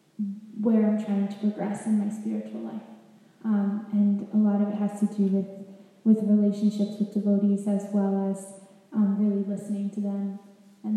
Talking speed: 175 wpm